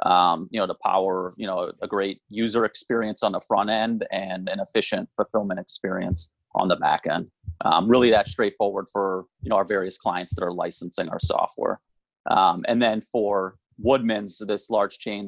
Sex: male